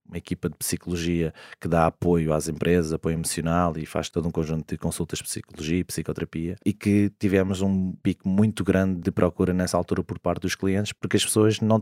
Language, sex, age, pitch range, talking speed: Portuguese, male, 20-39, 85-95 Hz, 210 wpm